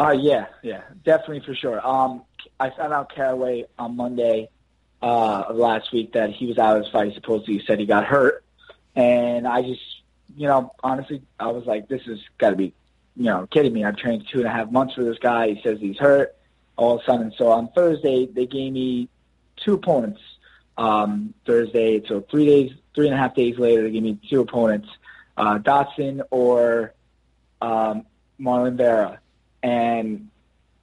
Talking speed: 190 wpm